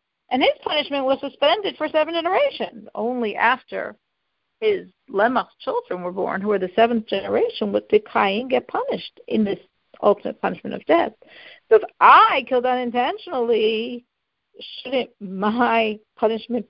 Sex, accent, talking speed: female, American, 140 wpm